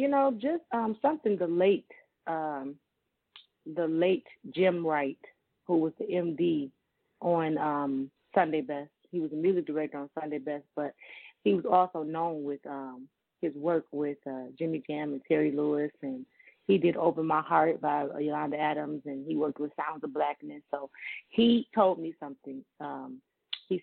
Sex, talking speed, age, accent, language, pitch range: female, 170 wpm, 30-49, American, English, 150-185 Hz